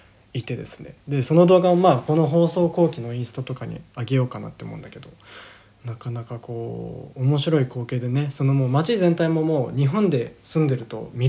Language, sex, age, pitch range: Japanese, male, 20-39, 115-145 Hz